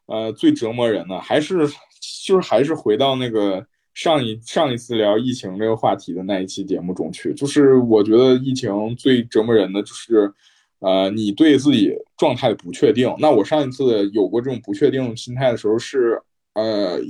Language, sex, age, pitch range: Chinese, male, 20-39, 105-145 Hz